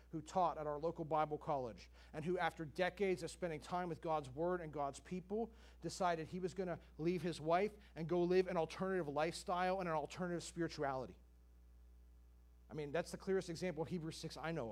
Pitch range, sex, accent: 130-205 Hz, male, American